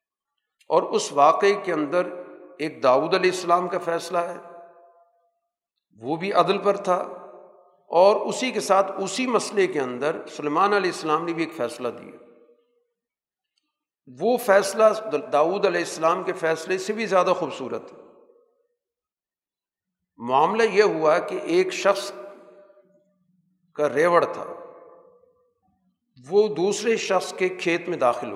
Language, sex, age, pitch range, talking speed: Urdu, male, 50-69, 165-230 Hz, 130 wpm